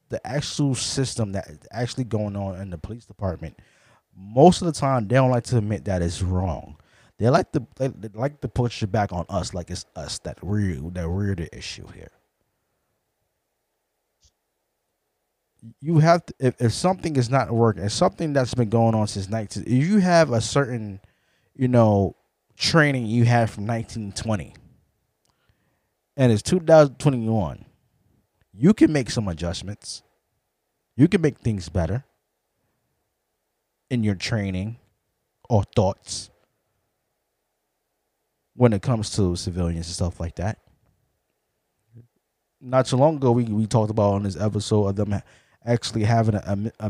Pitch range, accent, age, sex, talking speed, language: 100-125 Hz, American, 20-39, male, 155 wpm, English